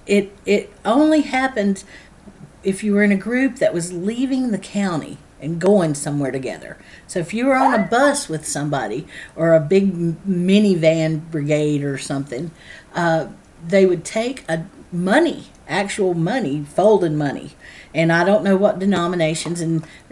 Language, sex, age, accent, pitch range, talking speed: English, female, 50-69, American, 165-195 Hz, 160 wpm